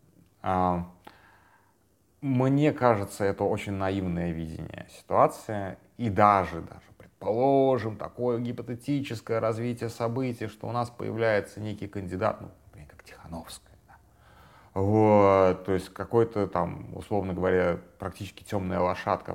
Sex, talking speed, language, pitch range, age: male, 110 wpm, Russian, 90-110 Hz, 30-49